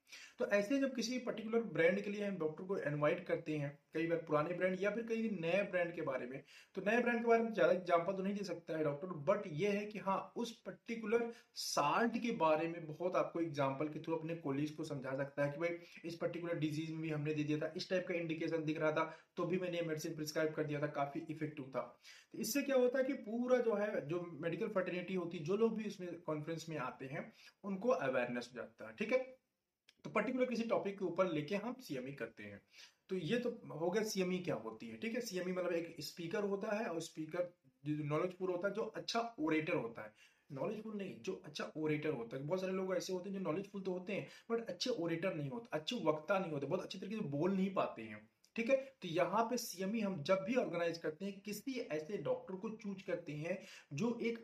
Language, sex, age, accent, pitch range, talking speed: Hindi, male, 30-49, native, 155-205 Hz, 205 wpm